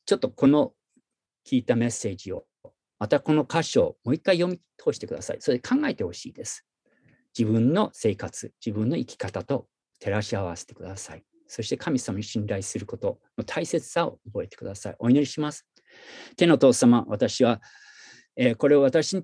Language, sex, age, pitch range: Japanese, male, 50-69, 110-165 Hz